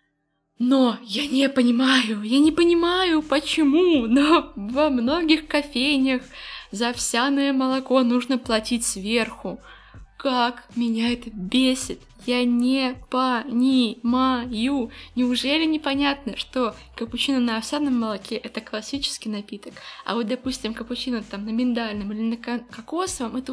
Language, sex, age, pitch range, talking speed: Russian, female, 20-39, 230-280 Hz, 115 wpm